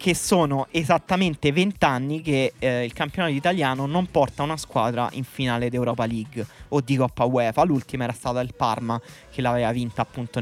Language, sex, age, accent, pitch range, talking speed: Italian, male, 20-39, native, 125-165 Hz, 180 wpm